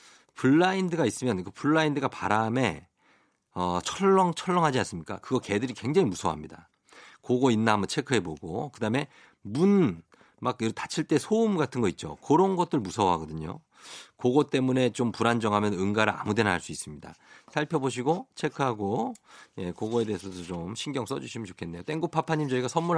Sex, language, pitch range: male, Korean, 110-165 Hz